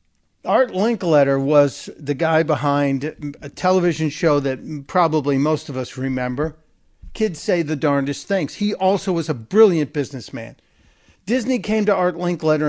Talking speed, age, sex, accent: 145 wpm, 50-69, male, American